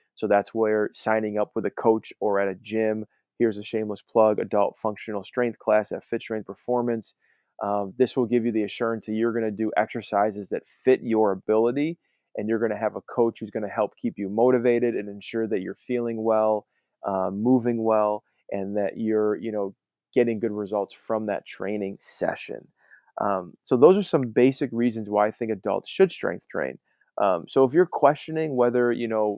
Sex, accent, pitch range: male, American, 105-120 Hz